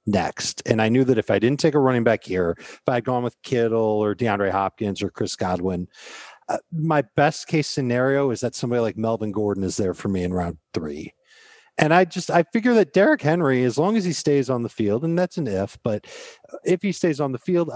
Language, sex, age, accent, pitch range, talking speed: English, male, 40-59, American, 105-145 Hz, 235 wpm